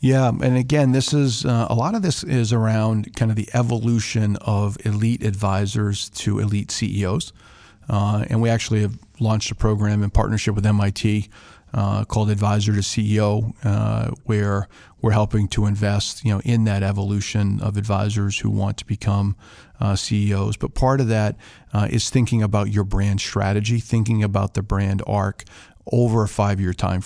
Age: 40-59